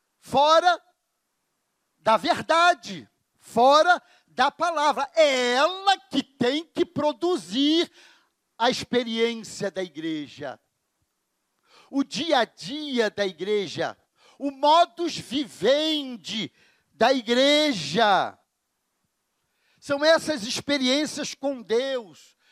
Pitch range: 190-300 Hz